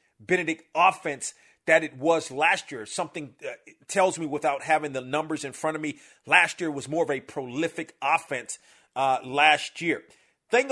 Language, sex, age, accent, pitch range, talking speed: English, male, 40-59, American, 160-225 Hz, 175 wpm